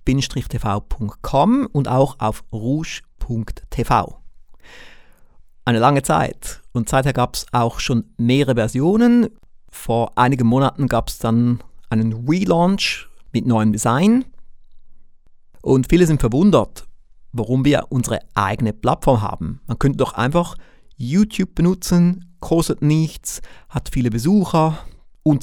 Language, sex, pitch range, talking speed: German, male, 115-155 Hz, 115 wpm